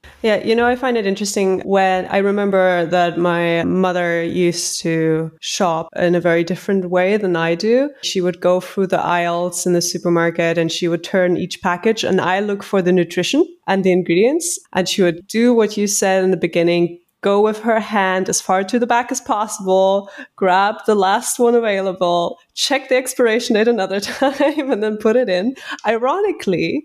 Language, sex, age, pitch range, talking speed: English, female, 20-39, 180-235 Hz, 190 wpm